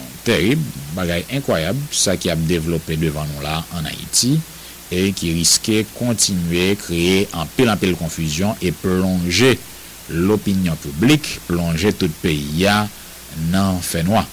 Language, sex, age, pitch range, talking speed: English, male, 60-79, 80-105 Hz, 140 wpm